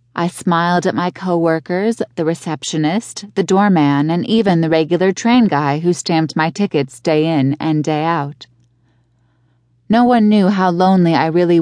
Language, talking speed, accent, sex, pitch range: English, 160 wpm, American, female, 140-185 Hz